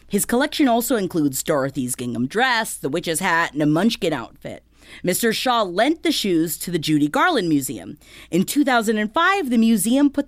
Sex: female